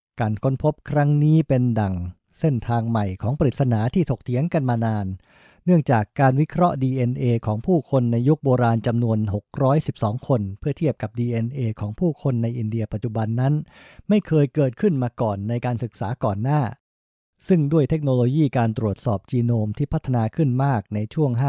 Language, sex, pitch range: English, male, 115-145 Hz